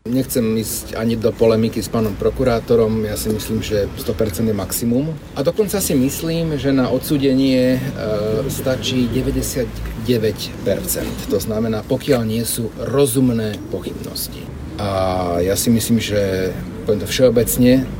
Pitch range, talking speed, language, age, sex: 105-130 Hz, 135 wpm, Slovak, 50-69, male